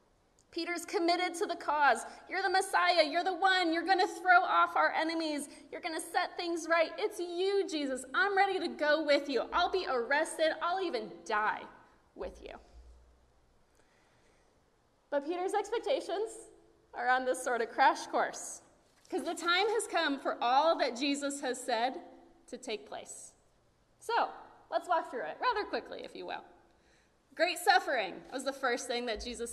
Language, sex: English, female